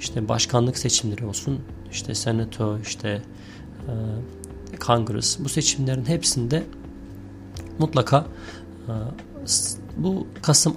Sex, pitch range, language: male, 110-140 Hz, Turkish